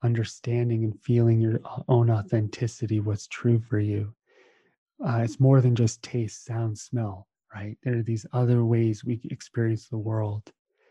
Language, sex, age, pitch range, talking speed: English, male, 30-49, 110-125 Hz, 155 wpm